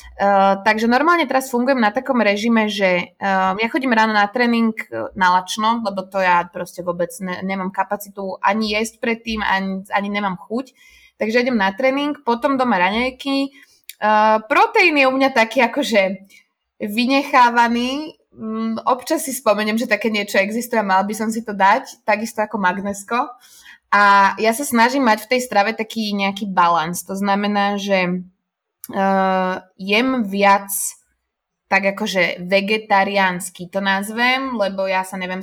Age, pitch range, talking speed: 20-39, 195-240 Hz, 150 wpm